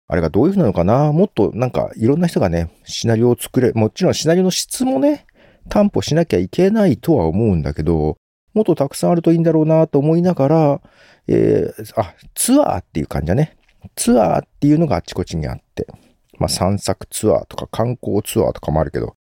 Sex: male